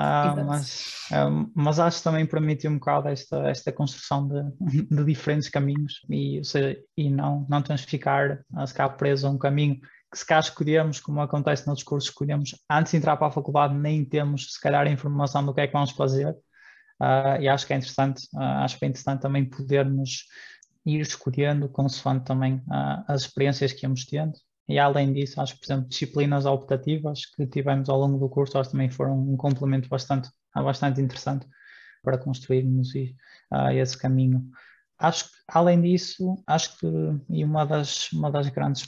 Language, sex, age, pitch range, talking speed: Portuguese, male, 20-39, 135-145 Hz, 180 wpm